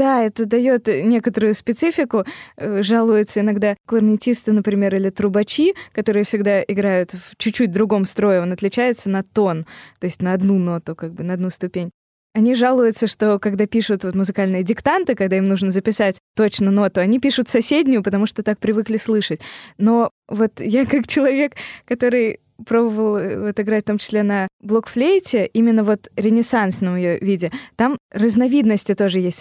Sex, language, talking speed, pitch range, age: female, Russian, 160 wpm, 200-240 Hz, 20-39